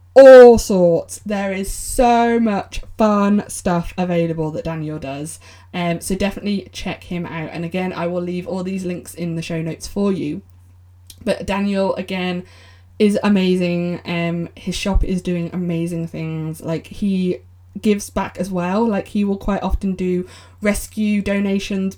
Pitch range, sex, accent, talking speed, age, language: 165-200 Hz, female, British, 160 wpm, 20-39, English